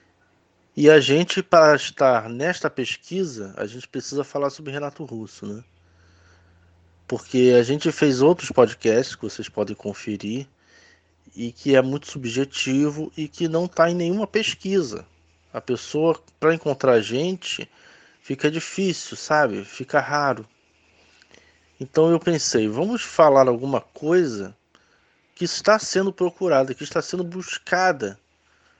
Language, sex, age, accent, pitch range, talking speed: Portuguese, male, 20-39, Brazilian, 110-170 Hz, 130 wpm